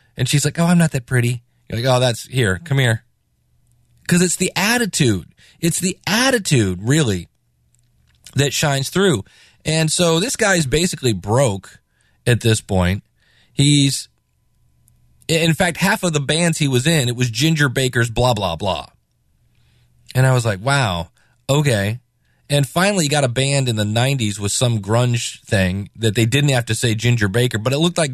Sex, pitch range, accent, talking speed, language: male, 110-160 Hz, American, 180 wpm, English